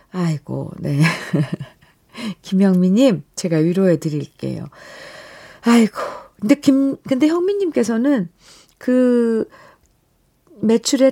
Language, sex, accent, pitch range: Korean, female, native, 165-240 Hz